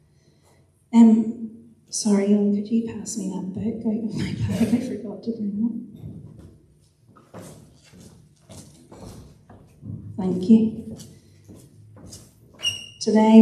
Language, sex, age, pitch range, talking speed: English, female, 30-49, 195-220 Hz, 90 wpm